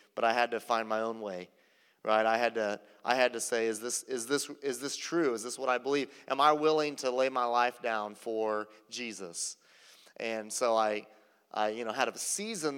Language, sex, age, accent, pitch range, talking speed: English, male, 30-49, American, 110-140 Hz, 220 wpm